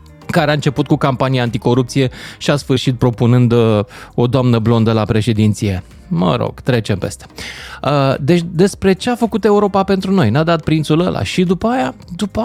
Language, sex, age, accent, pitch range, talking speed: Romanian, male, 20-39, native, 120-175 Hz, 170 wpm